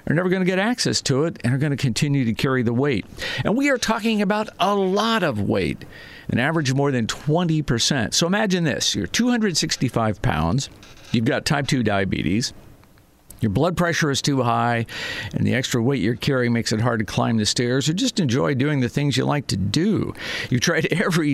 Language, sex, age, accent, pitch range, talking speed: English, male, 50-69, American, 120-165 Hz, 210 wpm